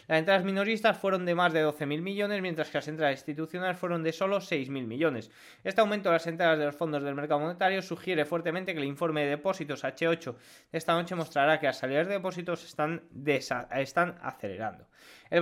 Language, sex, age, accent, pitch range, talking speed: Spanish, male, 20-39, Spanish, 150-190 Hz, 200 wpm